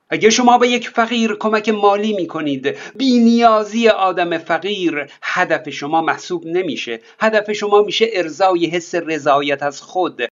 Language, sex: Persian, male